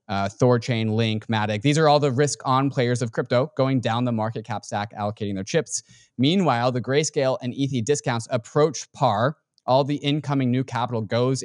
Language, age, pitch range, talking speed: English, 20-39, 120-160 Hz, 185 wpm